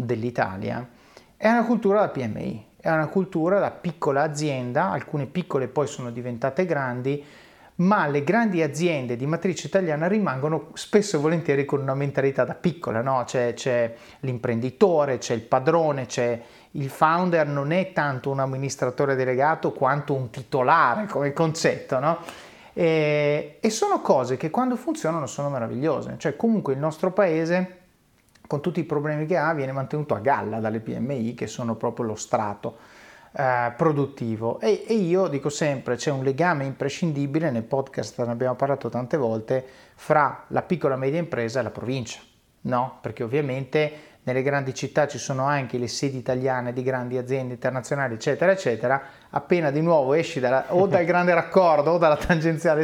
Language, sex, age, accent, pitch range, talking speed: Italian, male, 30-49, native, 130-165 Hz, 165 wpm